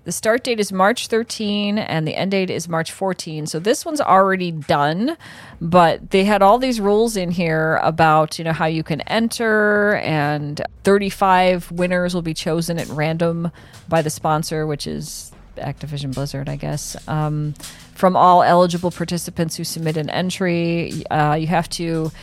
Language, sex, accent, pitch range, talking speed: English, female, American, 160-200 Hz, 170 wpm